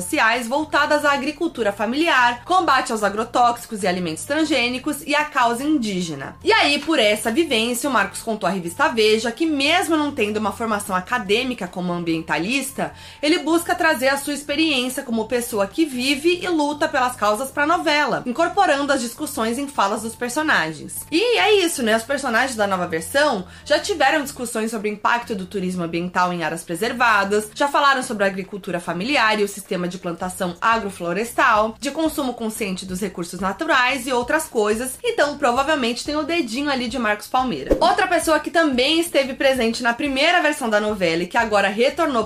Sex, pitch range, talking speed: female, 215-300 Hz, 175 wpm